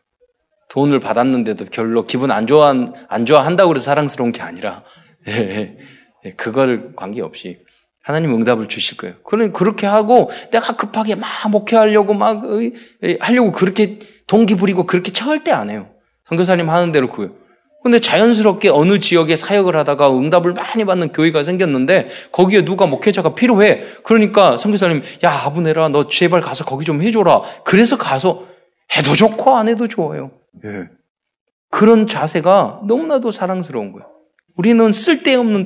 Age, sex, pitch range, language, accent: 20-39, male, 155-225 Hz, Korean, native